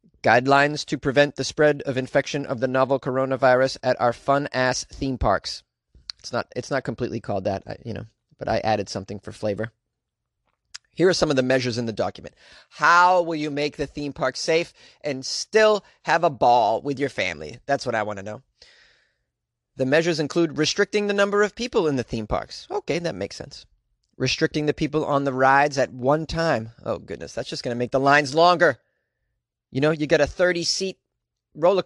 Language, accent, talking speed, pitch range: English, American, 195 wpm, 130-165 Hz